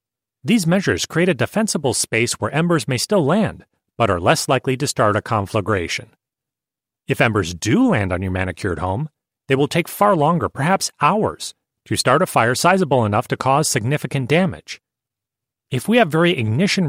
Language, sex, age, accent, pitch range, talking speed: English, male, 30-49, American, 110-155 Hz, 175 wpm